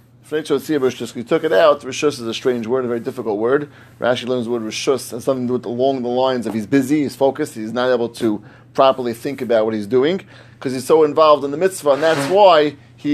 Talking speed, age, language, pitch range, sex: 235 wpm, 30-49, English, 120-150 Hz, male